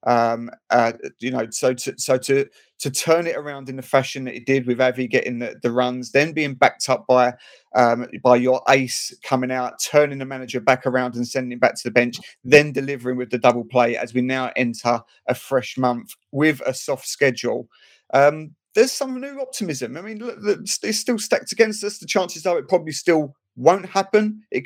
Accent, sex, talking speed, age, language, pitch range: British, male, 200 wpm, 30-49, English, 130-175 Hz